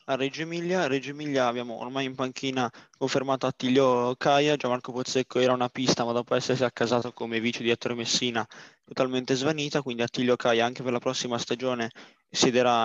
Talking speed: 175 wpm